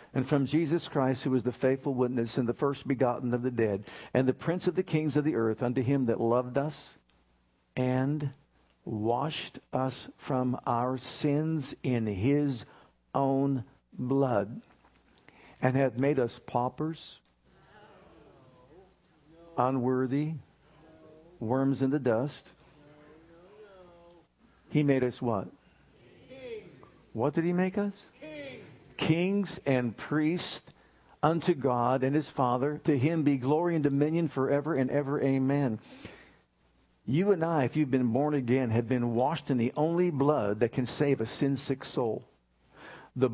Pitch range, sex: 125-155 Hz, male